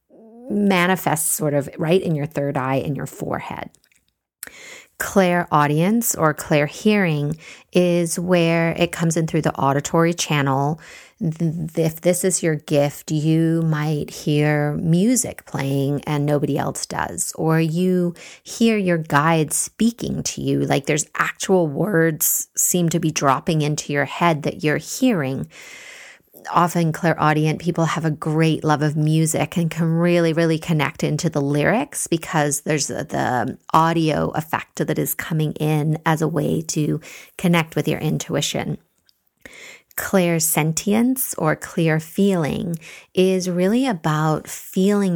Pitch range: 150-175 Hz